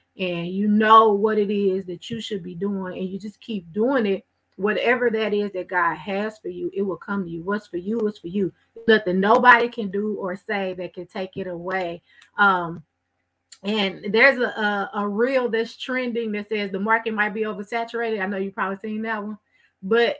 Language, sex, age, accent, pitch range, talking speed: English, female, 30-49, American, 190-235 Hz, 210 wpm